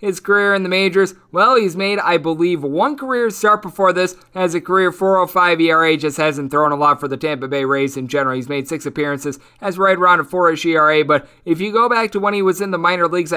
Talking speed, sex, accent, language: 245 wpm, male, American, English